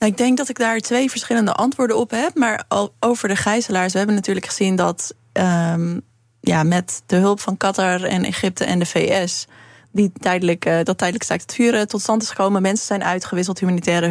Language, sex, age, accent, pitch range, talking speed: Dutch, female, 20-39, Dutch, 180-205 Hz, 205 wpm